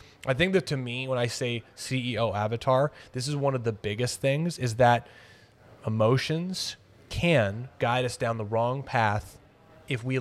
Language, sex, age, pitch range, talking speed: English, male, 20-39, 110-135 Hz, 170 wpm